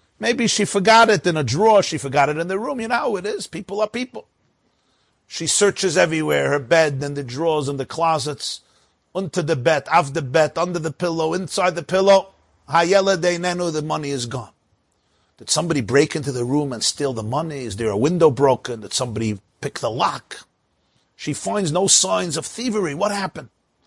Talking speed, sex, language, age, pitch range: 200 wpm, male, English, 50-69, 140-190 Hz